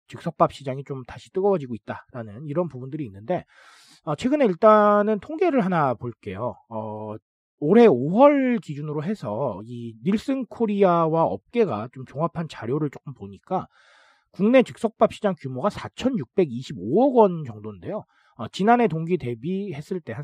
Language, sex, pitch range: Korean, male, 130-215 Hz